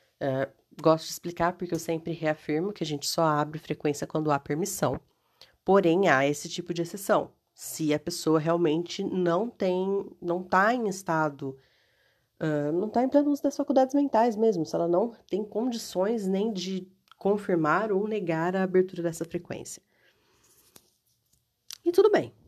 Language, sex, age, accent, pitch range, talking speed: Portuguese, female, 30-49, Brazilian, 150-190 Hz, 155 wpm